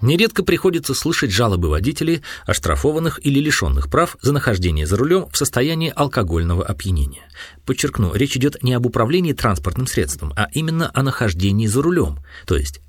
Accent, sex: native, male